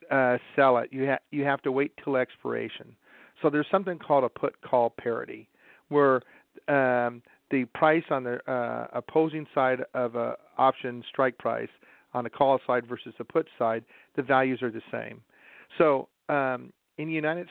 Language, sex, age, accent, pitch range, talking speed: English, male, 50-69, American, 125-150 Hz, 175 wpm